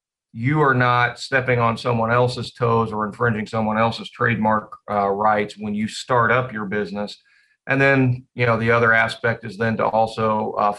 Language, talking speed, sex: English, 185 wpm, male